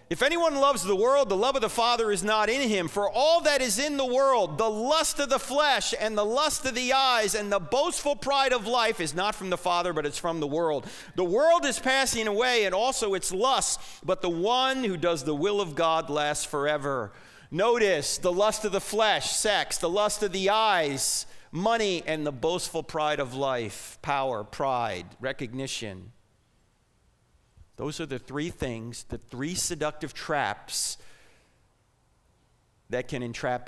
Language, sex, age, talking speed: English, male, 40-59, 180 wpm